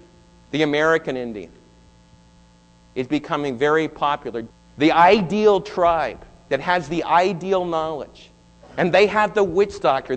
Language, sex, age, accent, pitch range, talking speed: English, male, 50-69, American, 140-180 Hz, 125 wpm